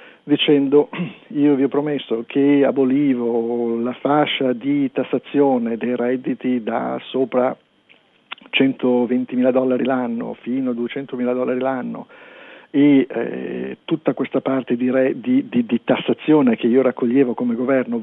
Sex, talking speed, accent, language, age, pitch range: male, 135 wpm, native, Italian, 50-69, 125-145 Hz